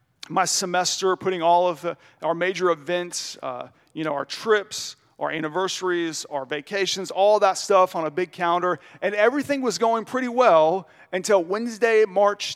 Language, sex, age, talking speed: English, male, 40-59, 160 wpm